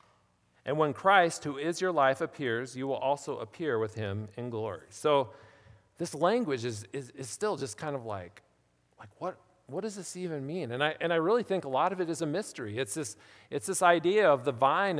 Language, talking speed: English, 220 wpm